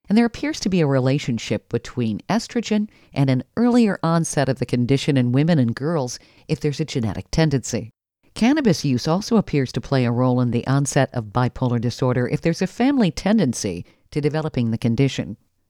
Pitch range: 120-175 Hz